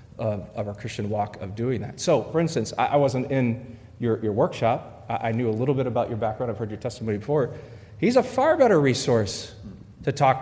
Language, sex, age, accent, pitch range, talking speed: English, male, 30-49, American, 115-145 Hz, 225 wpm